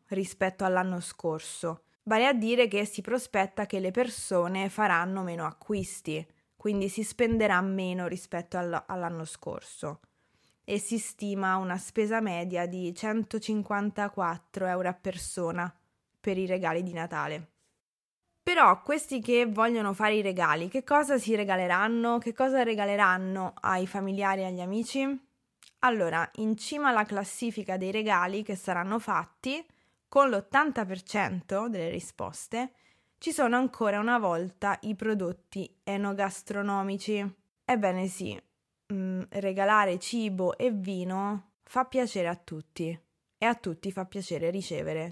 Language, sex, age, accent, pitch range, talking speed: Italian, female, 20-39, native, 180-225 Hz, 125 wpm